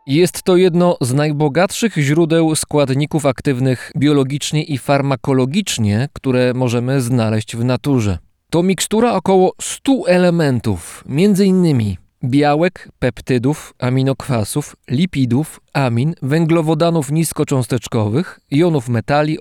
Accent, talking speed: native, 95 wpm